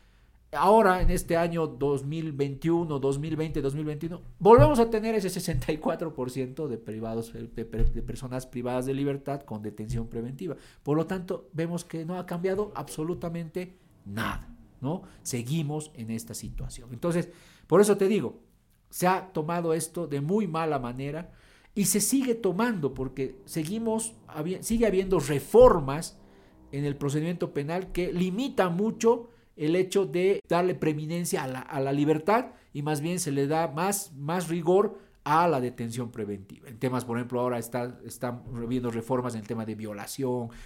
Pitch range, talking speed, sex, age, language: 120-175 Hz, 155 wpm, male, 50-69, Spanish